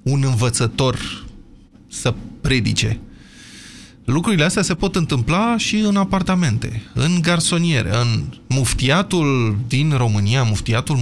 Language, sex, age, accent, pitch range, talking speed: Romanian, male, 20-39, native, 115-160 Hz, 105 wpm